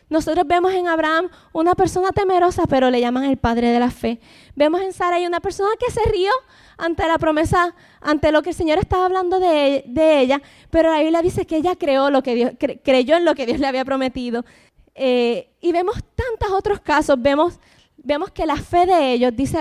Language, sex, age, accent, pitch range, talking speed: English, female, 10-29, American, 275-355 Hz, 210 wpm